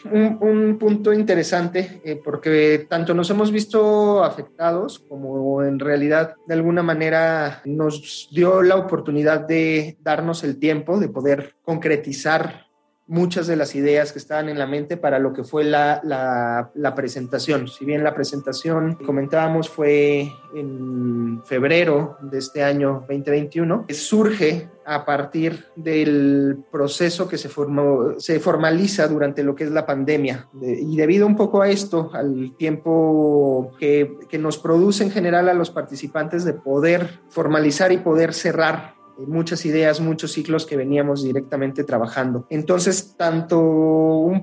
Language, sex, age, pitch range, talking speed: Spanish, male, 30-49, 145-170 Hz, 145 wpm